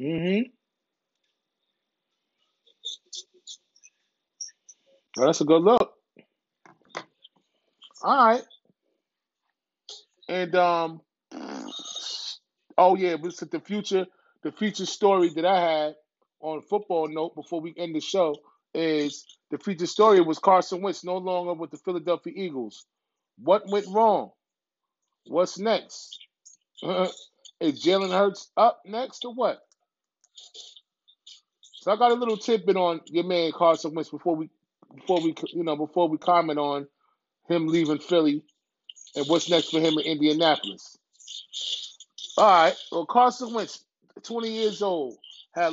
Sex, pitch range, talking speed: male, 160-210 Hz, 125 wpm